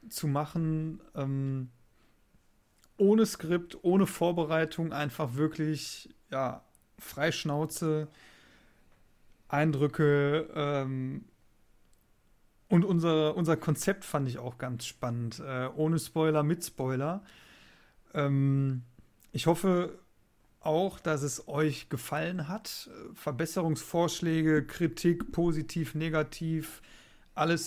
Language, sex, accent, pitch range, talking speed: German, male, German, 135-165 Hz, 90 wpm